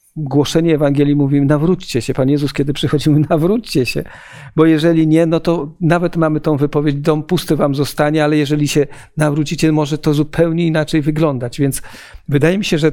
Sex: male